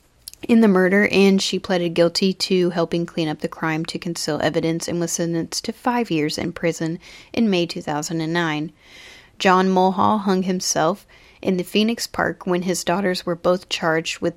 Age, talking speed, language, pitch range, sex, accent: 30-49, 175 wpm, English, 165-190 Hz, female, American